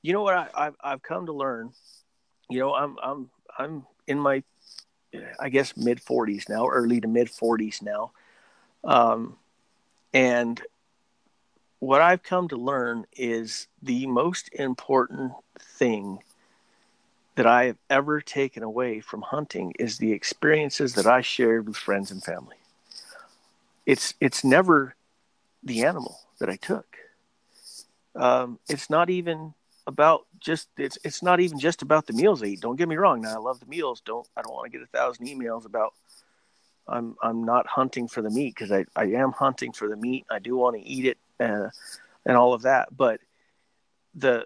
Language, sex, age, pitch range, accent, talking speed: English, male, 50-69, 115-140 Hz, American, 170 wpm